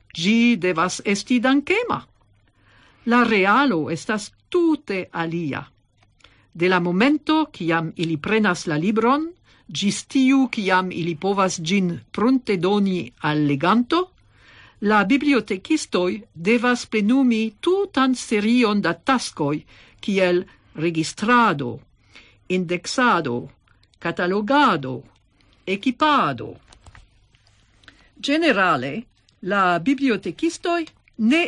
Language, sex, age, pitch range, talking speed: English, female, 50-69, 165-245 Hz, 85 wpm